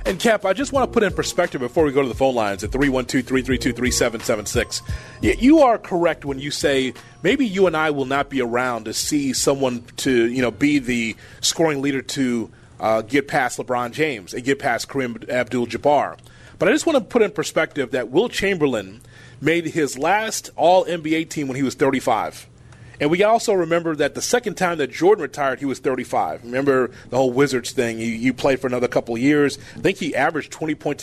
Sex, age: male, 30-49